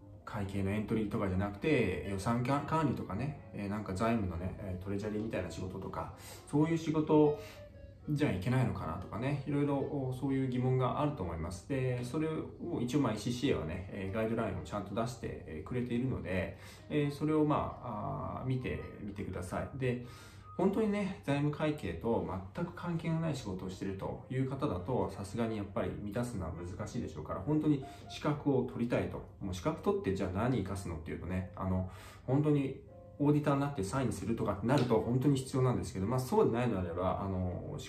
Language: Japanese